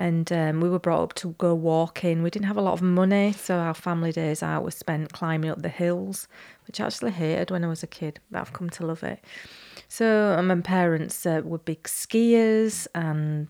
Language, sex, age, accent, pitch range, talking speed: English, female, 30-49, British, 160-200 Hz, 225 wpm